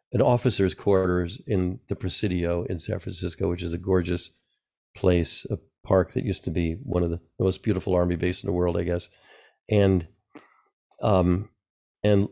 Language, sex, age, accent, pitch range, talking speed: English, male, 40-59, American, 90-110 Hz, 175 wpm